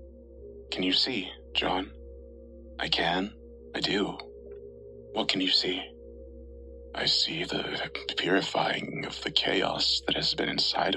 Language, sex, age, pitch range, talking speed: English, male, 30-49, 70-95 Hz, 125 wpm